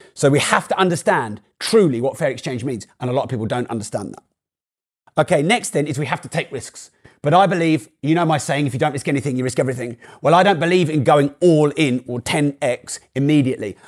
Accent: British